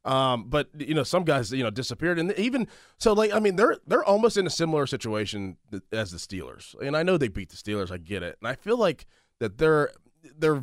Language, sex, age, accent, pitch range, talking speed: English, male, 20-39, American, 110-155 Hz, 235 wpm